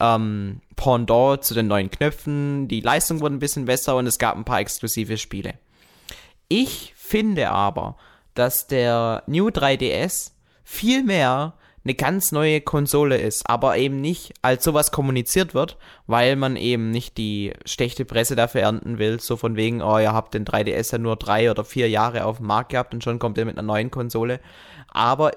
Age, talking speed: 20-39, 180 wpm